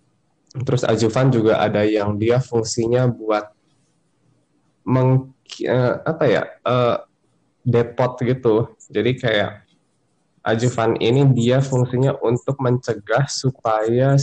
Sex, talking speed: male, 100 wpm